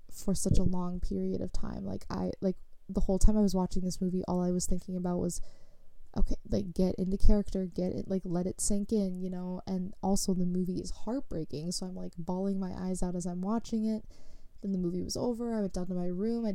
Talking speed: 245 wpm